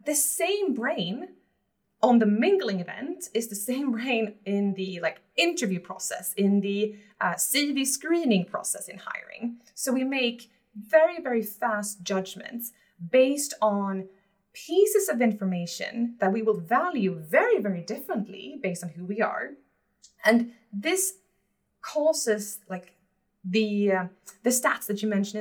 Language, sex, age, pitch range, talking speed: English, female, 20-39, 200-260 Hz, 140 wpm